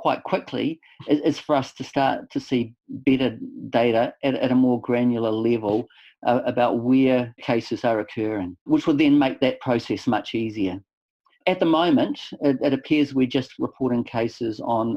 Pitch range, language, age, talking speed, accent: 120-140 Hz, English, 50-69, 155 wpm, Australian